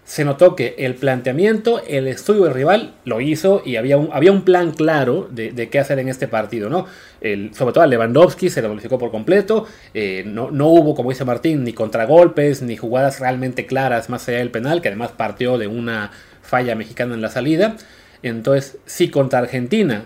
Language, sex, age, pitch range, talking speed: Spanish, male, 30-49, 110-145 Hz, 195 wpm